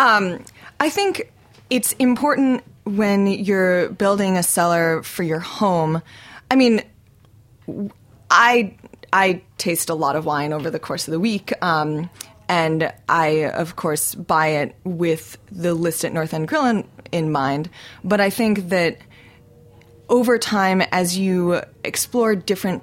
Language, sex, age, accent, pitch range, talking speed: English, female, 20-39, American, 160-205 Hz, 140 wpm